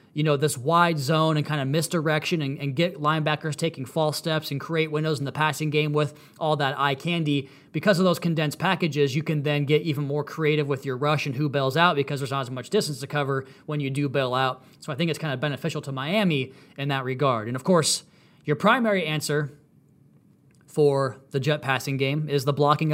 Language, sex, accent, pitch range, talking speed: English, male, American, 145-170 Hz, 225 wpm